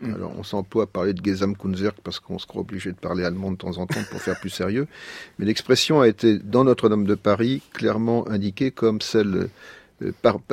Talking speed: 210 wpm